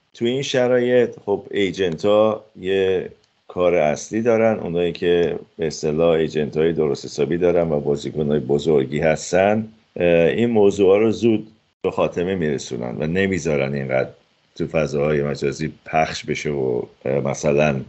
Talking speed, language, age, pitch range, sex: 135 wpm, Persian, 50-69, 75-95 Hz, male